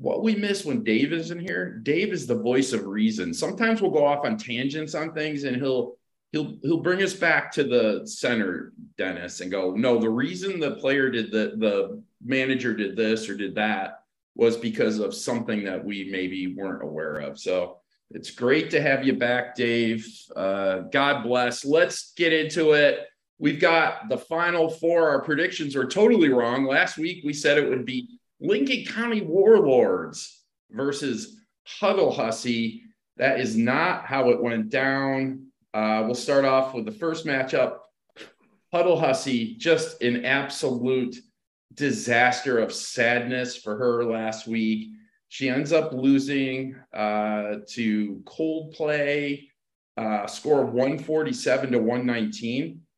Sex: male